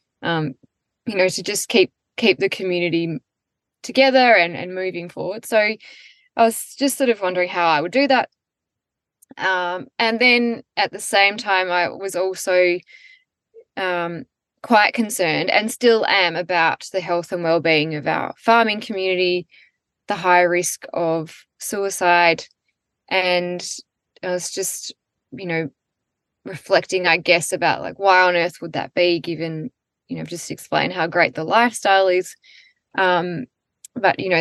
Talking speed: 150 wpm